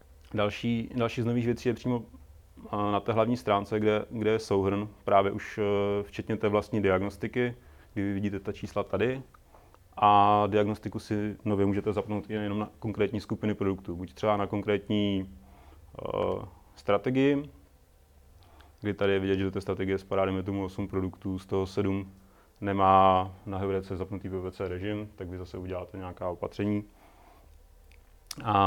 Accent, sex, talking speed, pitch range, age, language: native, male, 155 wpm, 95-105 Hz, 30-49, Czech